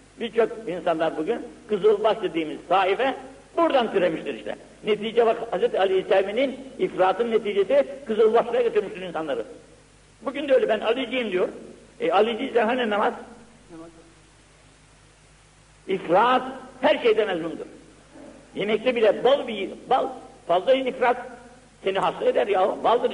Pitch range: 170-255 Hz